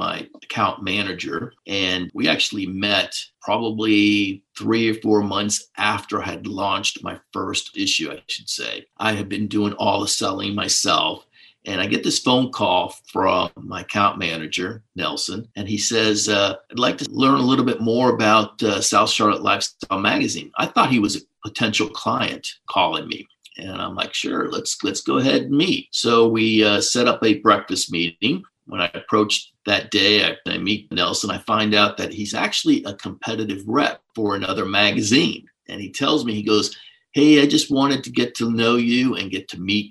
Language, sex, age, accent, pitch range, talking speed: English, male, 50-69, American, 100-125 Hz, 190 wpm